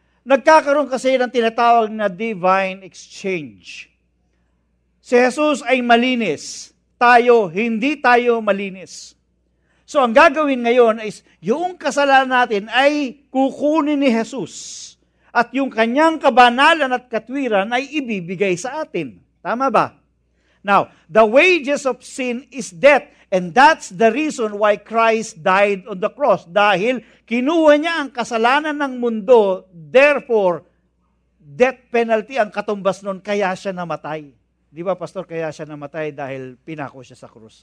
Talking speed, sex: 130 wpm, male